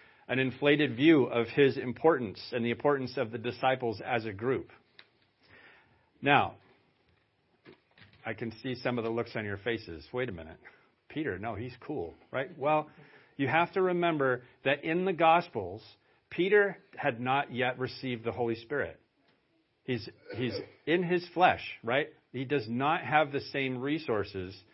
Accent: American